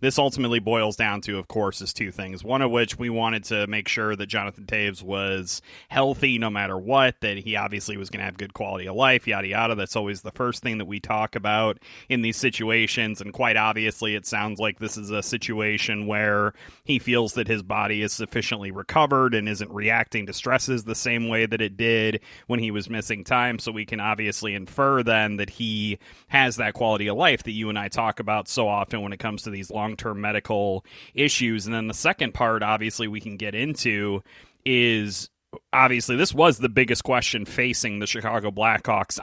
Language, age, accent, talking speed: English, 30-49, American, 210 wpm